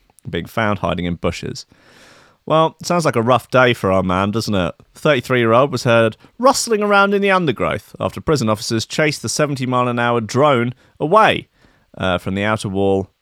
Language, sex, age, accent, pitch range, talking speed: English, male, 30-49, British, 95-125 Hz, 175 wpm